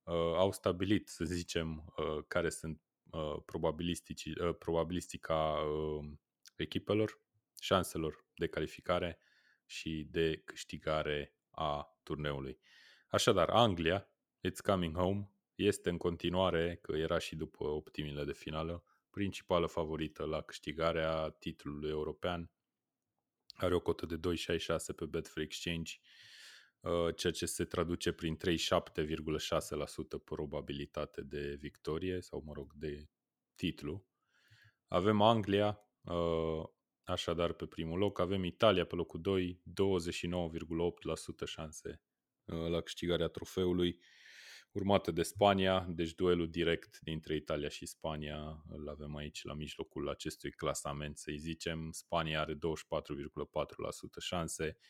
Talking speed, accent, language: 115 wpm, native, Romanian